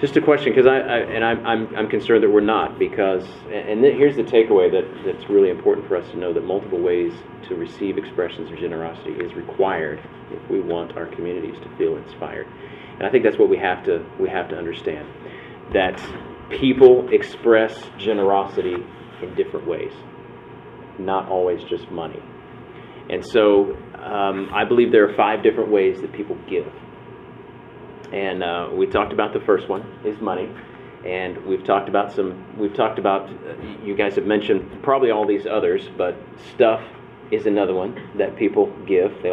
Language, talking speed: English, 180 wpm